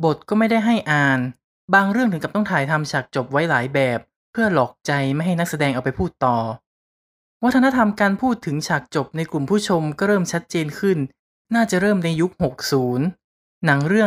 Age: 20-39